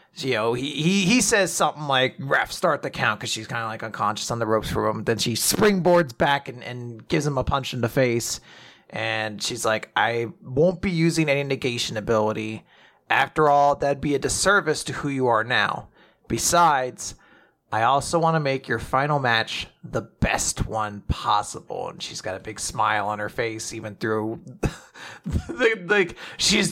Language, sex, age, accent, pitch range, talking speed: English, male, 30-49, American, 110-150 Hz, 190 wpm